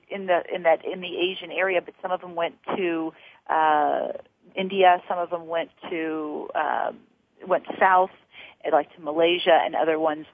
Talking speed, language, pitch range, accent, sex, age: 150 wpm, English, 155-195 Hz, American, female, 40-59